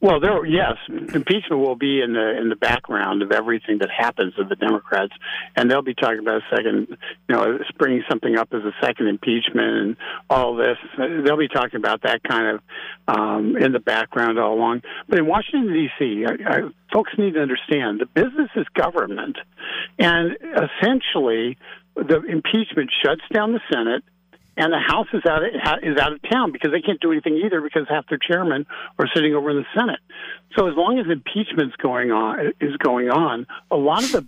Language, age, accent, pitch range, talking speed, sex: English, 60-79, American, 135-180 Hz, 195 wpm, male